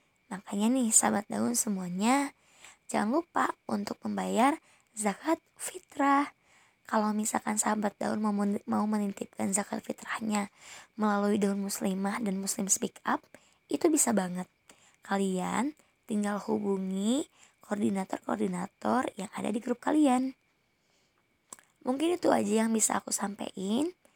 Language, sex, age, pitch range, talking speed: Indonesian, male, 20-39, 205-255 Hz, 110 wpm